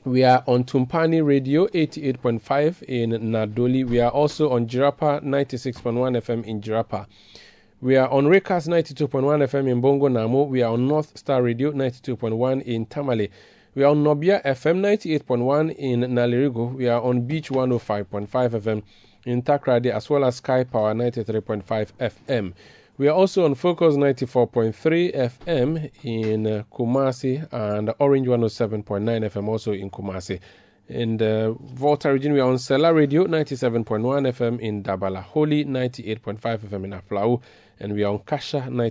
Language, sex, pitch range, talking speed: English, male, 110-140 Hz, 150 wpm